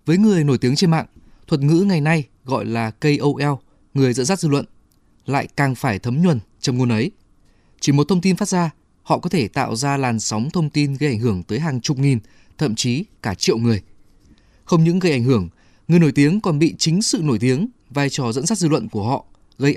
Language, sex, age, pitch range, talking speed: Vietnamese, male, 20-39, 115-165 Hz, 230 wpm